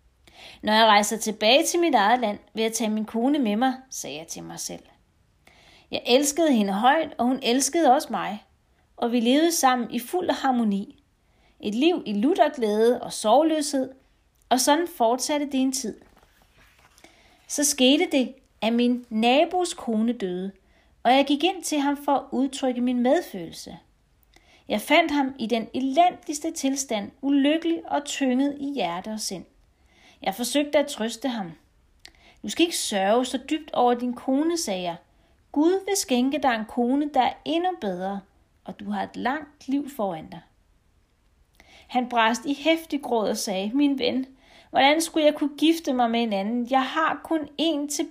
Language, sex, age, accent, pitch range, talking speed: Danish, female, 30-49, native, 220-290 Hz, 175 wpm